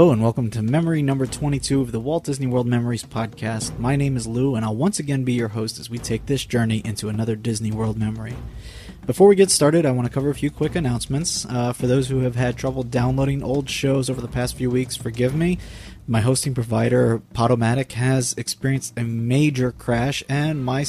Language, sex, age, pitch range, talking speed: English, male, 20-39, 115-140 Hz, 220 wpm